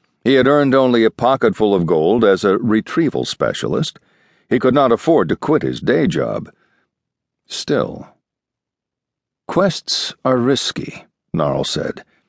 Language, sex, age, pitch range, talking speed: English, male, 60-79, 110-140 Hz, 130 wpm